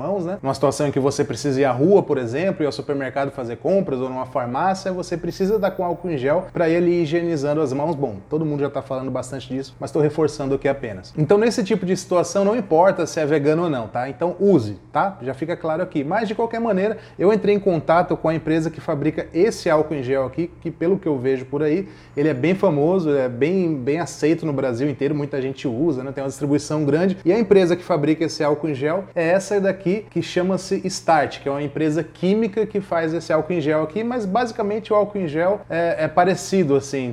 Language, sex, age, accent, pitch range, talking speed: English, male, 20-39, Brazilian, 140-190 Hz, 240 wpm